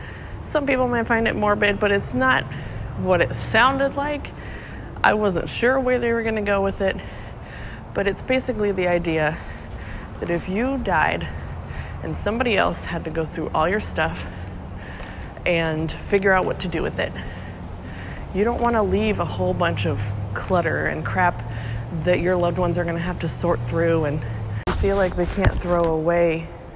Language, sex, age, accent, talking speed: English, female, 20-39, American, 175 wpm